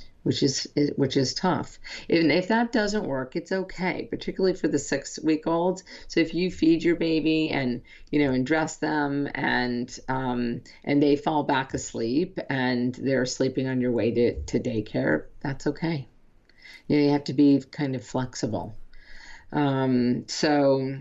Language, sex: English, female